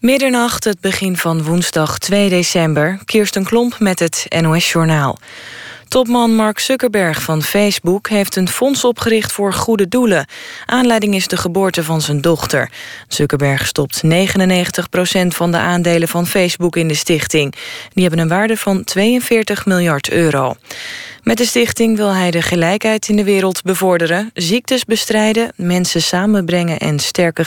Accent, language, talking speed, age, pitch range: Dutch, Dutch, 150 wpm, 20-39, 160-205 Hz